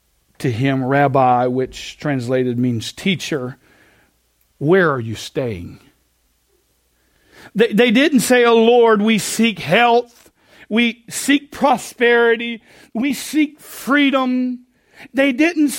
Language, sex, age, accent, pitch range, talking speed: English, male, 50-69, American, 145-240 Hz, 105 wpm